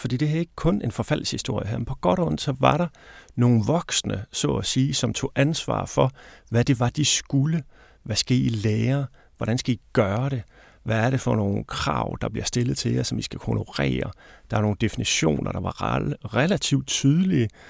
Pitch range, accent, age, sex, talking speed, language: 100-135 Hz, native, 30-49, male, 205 wpm, Danish